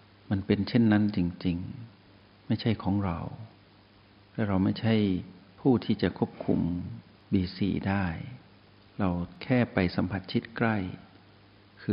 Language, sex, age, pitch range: Thai, male, 60-79, 95-110 Hz